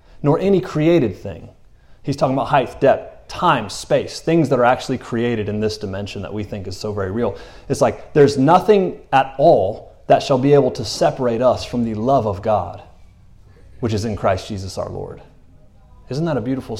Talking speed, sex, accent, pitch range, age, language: 195 wpm, male, American, 105-135 Hz, 30-49, English